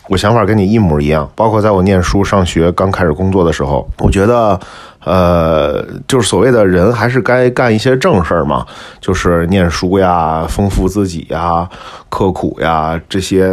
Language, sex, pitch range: Chinese, male, 85-120 Hz